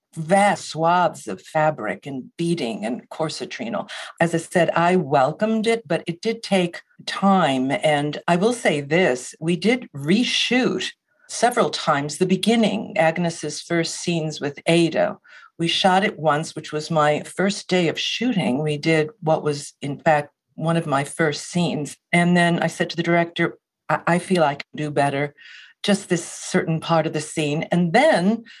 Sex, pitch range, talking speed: female, 155-200 Hz, 170 wpm